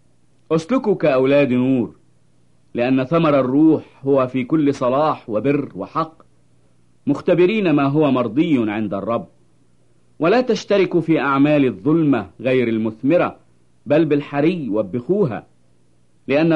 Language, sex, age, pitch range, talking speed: English, male, 50-69, 110-160 Hz, 105 wpm